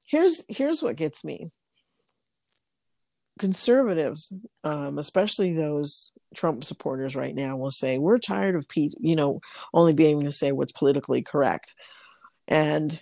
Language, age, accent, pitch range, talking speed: English, 50-69, American, 145-185 Hz, 140 wpm